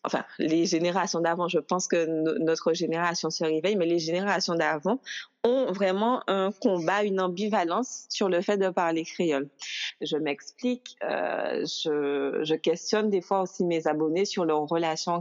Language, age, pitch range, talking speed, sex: French, 30-49, 165-215 Hz, 160 wpm, female